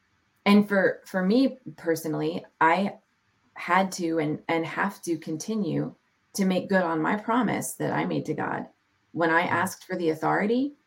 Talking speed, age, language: 165 wpm, 30-49, English